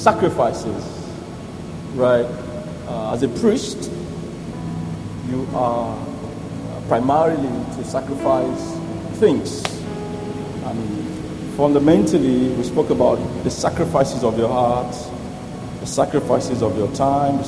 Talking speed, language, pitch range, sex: 100 wpm, English, 110-140 Hz, male